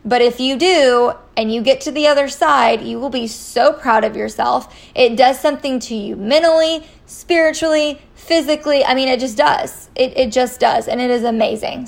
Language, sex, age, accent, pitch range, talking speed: English, female, 20-39, American, 235-290 Hz, 195 wpm